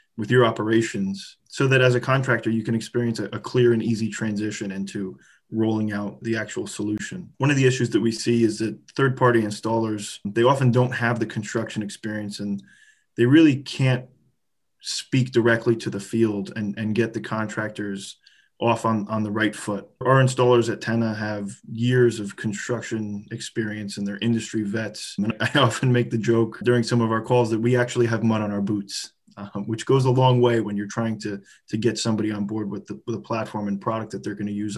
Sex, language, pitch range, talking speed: male, English, 105-125 Hz, 205 wpm